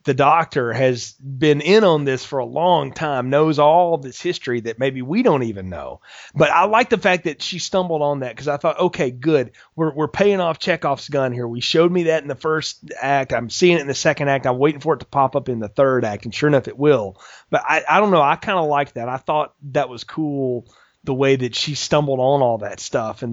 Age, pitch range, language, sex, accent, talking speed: 30-49, 130-170 Hz, English, male, American, 255 wpm